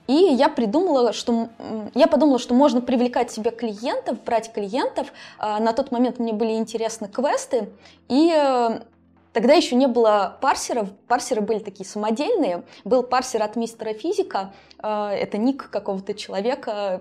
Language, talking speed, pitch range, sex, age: Russian, 140 wpm, 205-250 Hz, female, 20-39